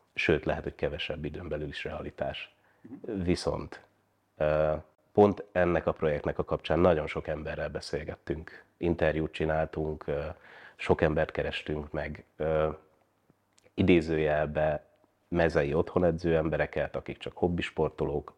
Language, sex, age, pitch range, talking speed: Hungarian, male, 30-49, 80-95 Hz, 110 wpm